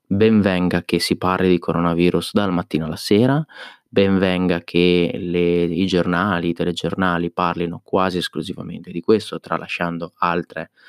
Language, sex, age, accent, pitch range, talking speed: Italian, male, 30-49, native, 85-100 Hz, 125 wpm